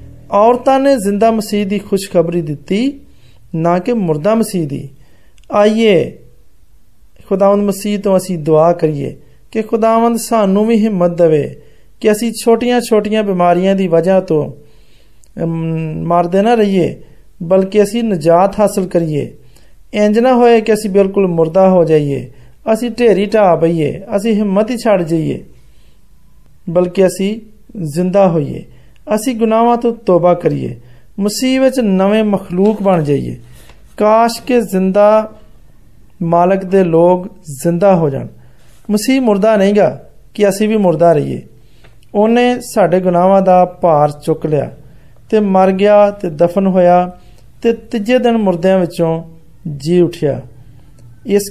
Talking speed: 100 wpm